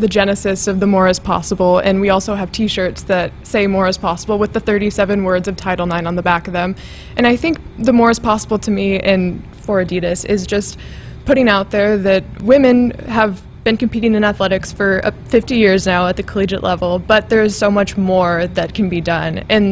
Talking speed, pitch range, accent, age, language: 220 wpm, 185-220 Hz, American, 20-39, English